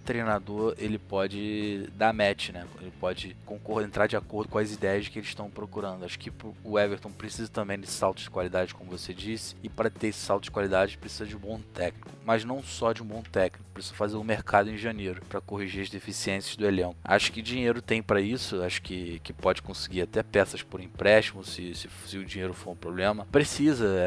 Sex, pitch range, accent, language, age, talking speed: male, 90-110 Hz, Brazilian, Portuguese, 20-39, 215 wpm